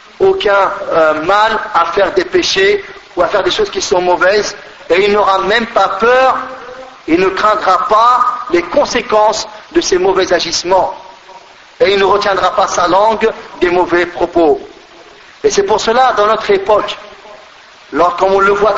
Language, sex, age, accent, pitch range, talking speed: French, male, 50-69, French, 205-265 Hz, 170 wpm